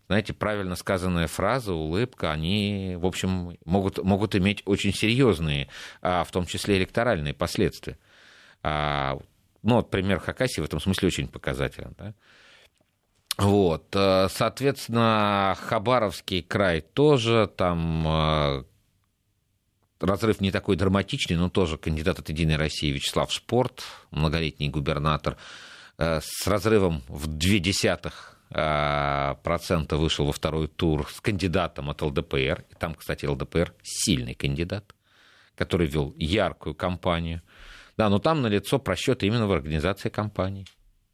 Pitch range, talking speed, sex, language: 80-100 Hz, 120 wpm, male, Russian